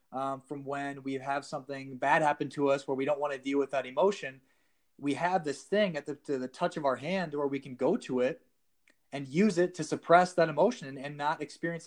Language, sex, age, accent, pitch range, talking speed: English, male, 30-49, American, 140-180 Hz, 235 wpm